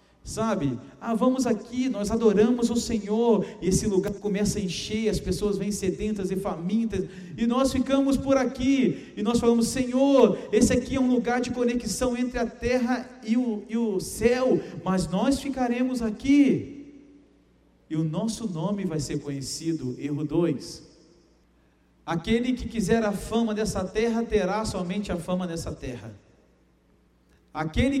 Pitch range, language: 165-230 Hz, Portuguese